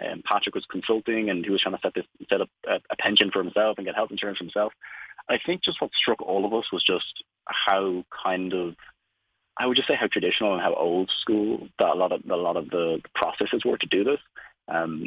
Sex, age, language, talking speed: male, 30-49, English, 235 wpm